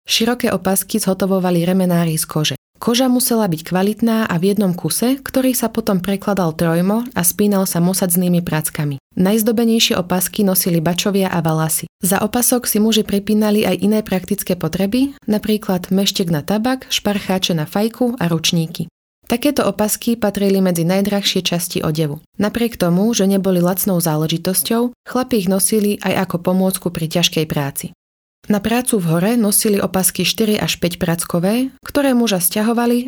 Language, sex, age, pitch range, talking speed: Slovak, female, 20-39, 175-220 Hz, 150 wpm